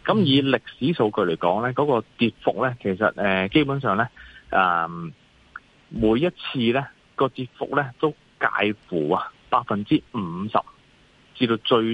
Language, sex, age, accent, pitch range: Chinese, male, 30-49, native, 95-135 Hz